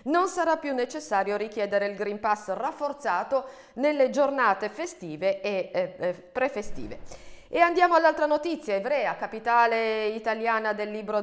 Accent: native